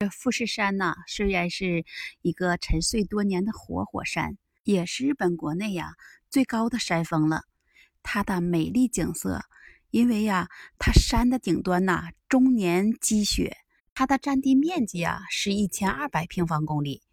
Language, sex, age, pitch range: Chinese, female, 20-39, 170-250 Hz